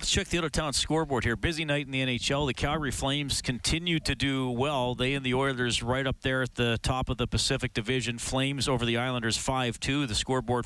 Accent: American